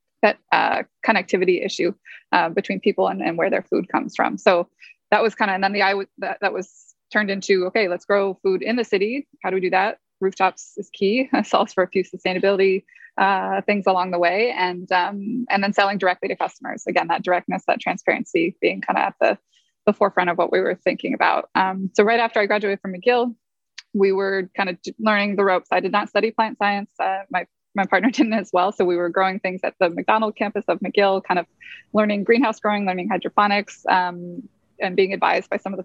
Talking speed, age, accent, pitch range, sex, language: 225 wpm, 20-39, American, 185-210 Hz, female, English